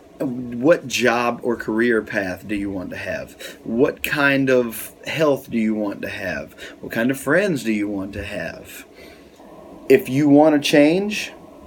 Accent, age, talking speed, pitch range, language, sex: American, 30-49, 170 wpm, 110-145 Hz, English, male